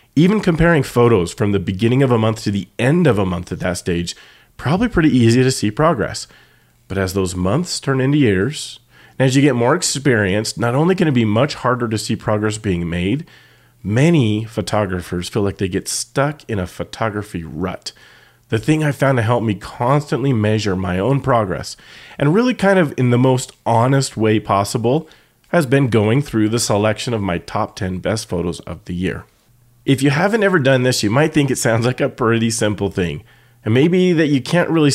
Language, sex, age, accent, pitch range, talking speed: English, male, 30-49, American, 105-135 Hz, 205 wpm